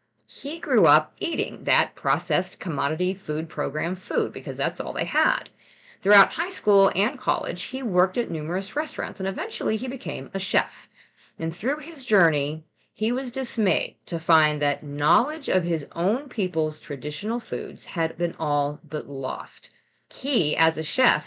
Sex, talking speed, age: female, 160 wpm, 40-59